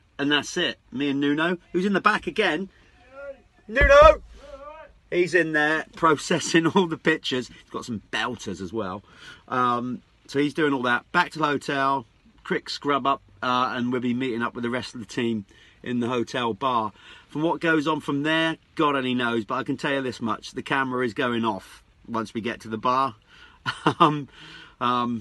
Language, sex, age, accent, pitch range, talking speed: English, male, 40-59, British, 120-160 Hz, 200 wpm